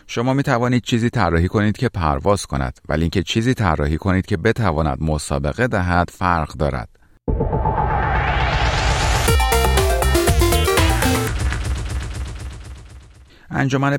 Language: Persian